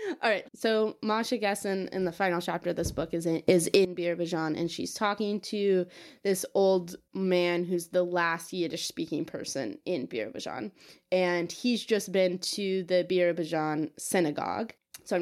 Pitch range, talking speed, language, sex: 170-210 Hz, 160 wpm, English, female